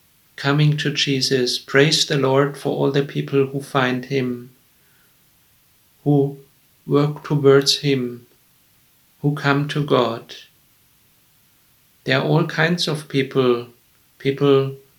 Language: English